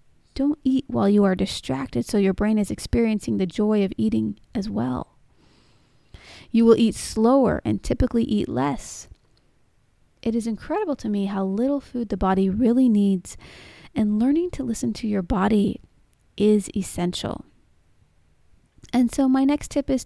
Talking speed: 155 wpm